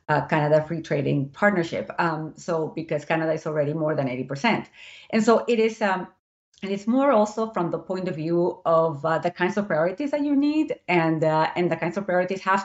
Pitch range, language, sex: 165-205 Hz, English, female